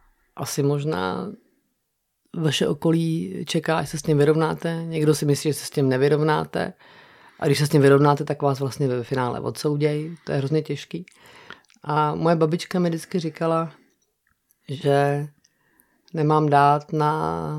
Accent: native